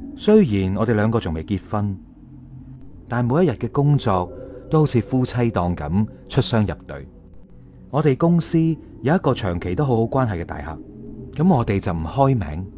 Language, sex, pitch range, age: Chinese, male, 90-135 Hz, 30-49